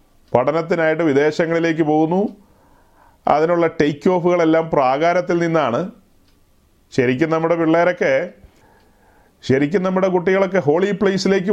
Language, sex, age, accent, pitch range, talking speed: Malayalam, male, 30-49, native, 150-185 Hz, 85 wpm